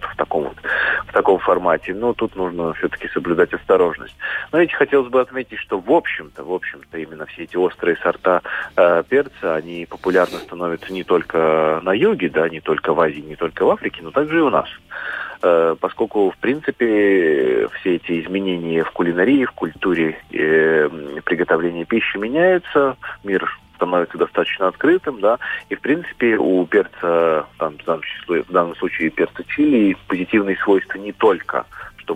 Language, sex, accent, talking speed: Russian, male, native, 155 wpm